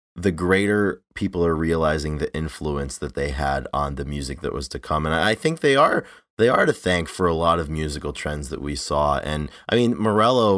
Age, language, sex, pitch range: 30-49, English, male, 70-85 Hz